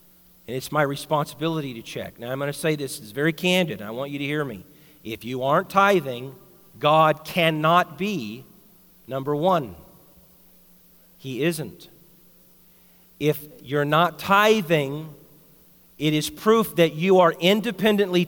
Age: 40-59